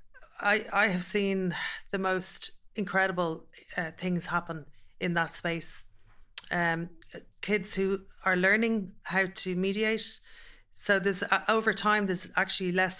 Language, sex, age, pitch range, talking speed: English, female, 30-49, 170-200 Hz, 135 wpm